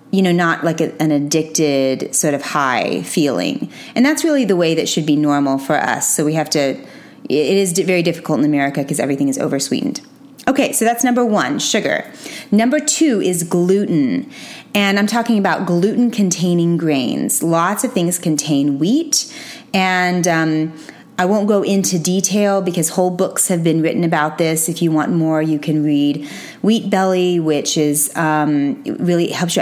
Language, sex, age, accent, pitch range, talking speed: English, female, 30-49, American, 155-200 Hz, 180 wpm